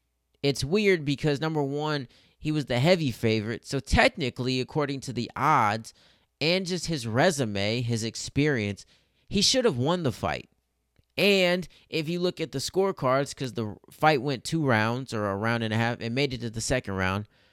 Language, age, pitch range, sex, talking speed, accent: English, 30-49, 115-160 Hz, male, 185 wpm, American